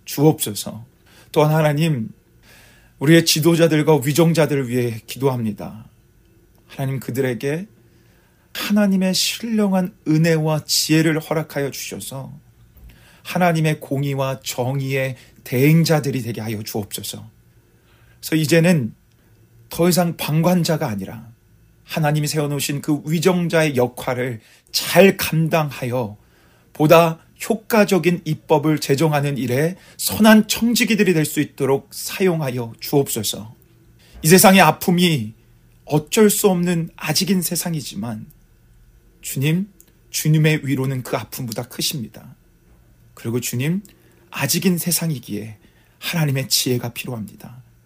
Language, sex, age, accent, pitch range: Korean, male, 40-59, native, 115-165 Hz